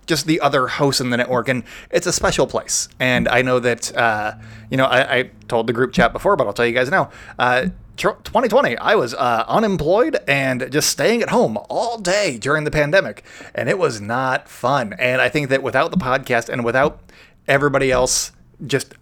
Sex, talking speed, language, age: male, 210 wpm, English, 30-49